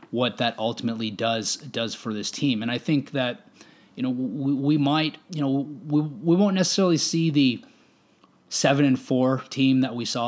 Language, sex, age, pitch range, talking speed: English, male, 20-39, 115-135 Hz, 185 wpm